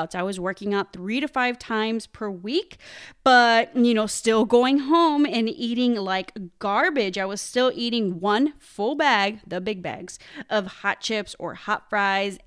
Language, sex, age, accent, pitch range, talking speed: English, female, 20-39, American, 210-310 Hz, 175 wpm